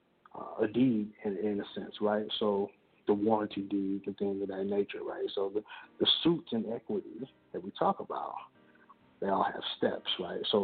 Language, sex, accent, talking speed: English, male, American, 190 wpm